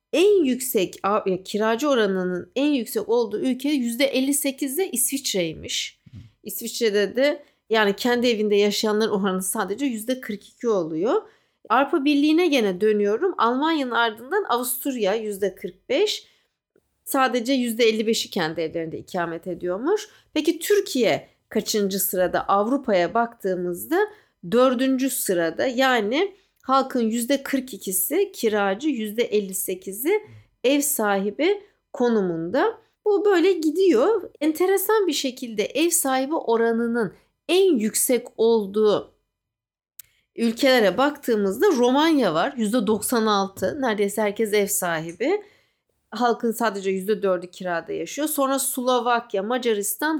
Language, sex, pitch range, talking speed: English, female, 210-285 Hz, 95 wpm